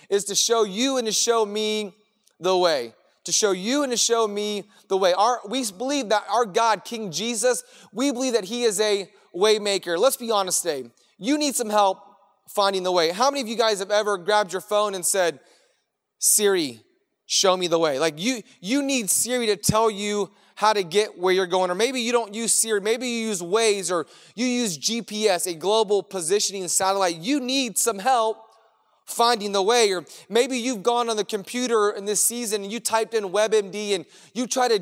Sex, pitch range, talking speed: male, 200-240 Hz, 210 wpm